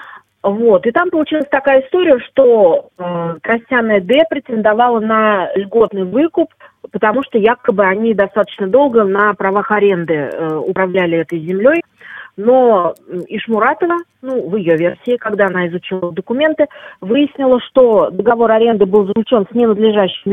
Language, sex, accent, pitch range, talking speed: Russian, female, native, 185-245 Hz, 135 wpm